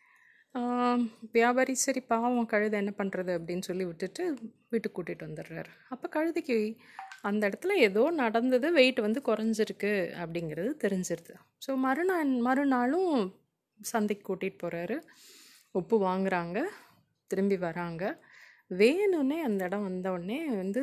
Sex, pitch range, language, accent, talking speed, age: female, 185-245 Hz, English, Indian, 120 wpm, 30-49